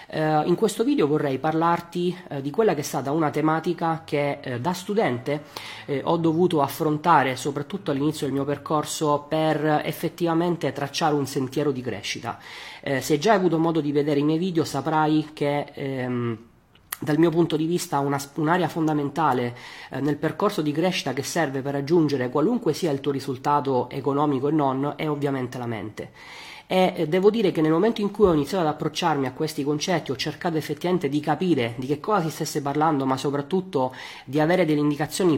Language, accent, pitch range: Italian, native, 140-165 Hz